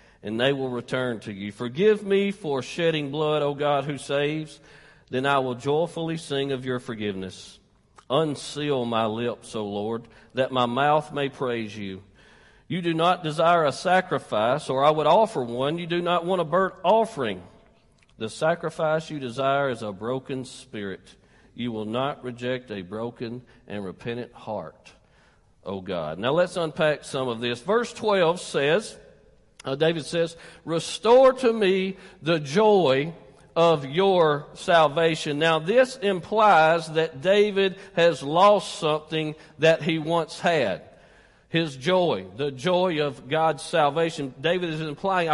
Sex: male